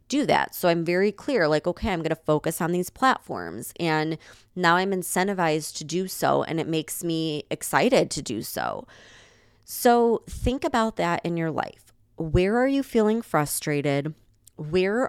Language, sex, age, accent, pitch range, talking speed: English, female, 20-39, American, 145-180 Hz, 170 wpm